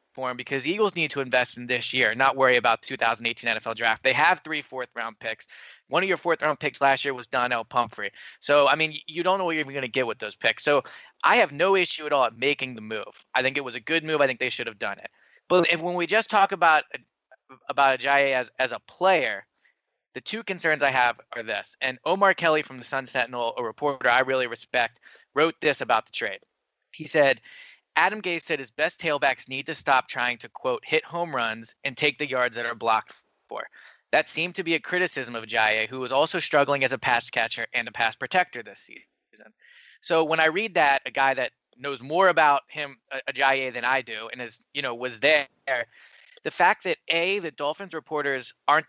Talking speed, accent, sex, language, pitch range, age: 225 wpm, American, male, English, 125-160 Hz, 20-39